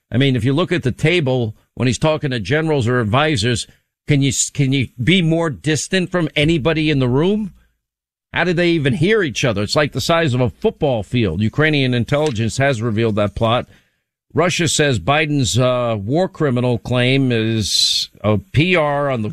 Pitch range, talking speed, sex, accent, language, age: 115-150 Hz, 185 wpm, male, American, English, 50-69